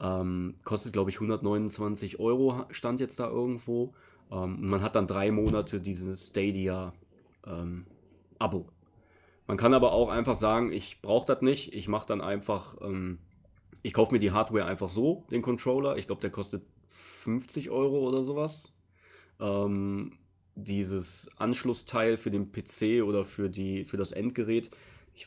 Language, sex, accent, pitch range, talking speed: German, male, German, 95-115 Hz, 155 wpm